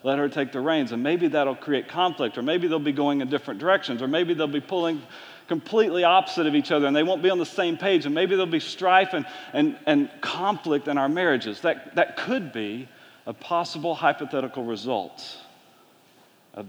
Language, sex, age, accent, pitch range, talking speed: English, male, 40-59, American, 120-170 Hz, 205 wpm